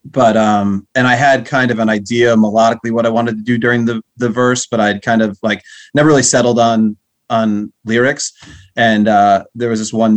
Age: 30-49